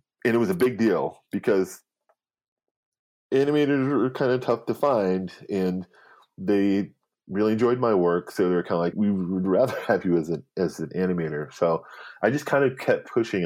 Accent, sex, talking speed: American, male, 185 wpm